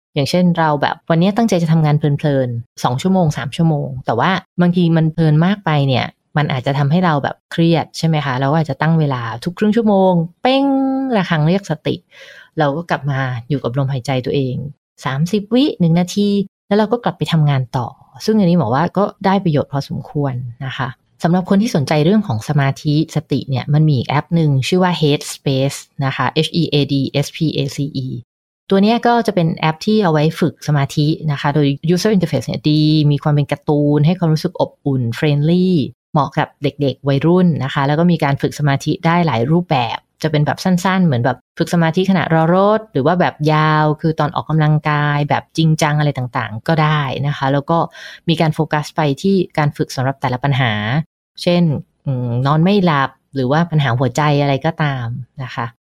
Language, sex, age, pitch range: English, female, 20-39, 140-170 Hz